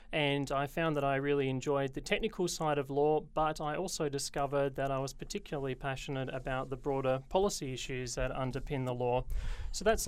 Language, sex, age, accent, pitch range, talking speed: English, male, 30-49, Australian, 130-150 Hz, 190 wpm